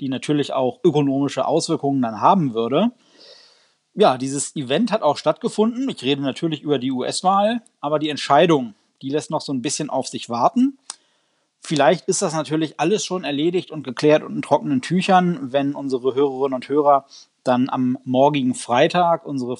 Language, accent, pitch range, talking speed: German, German, 130-180 Hz, 170 wpm